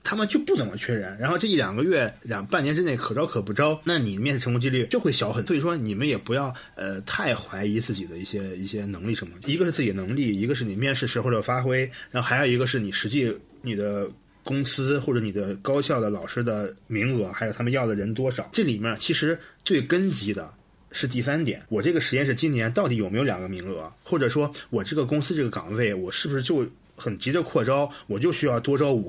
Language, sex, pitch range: Chinese, male, 105-140 Hz